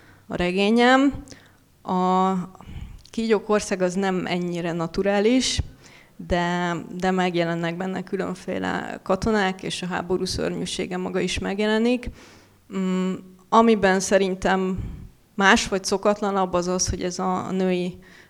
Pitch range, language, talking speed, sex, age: 180-205 Hz, Hungarian, 105 wpm, female, 20-39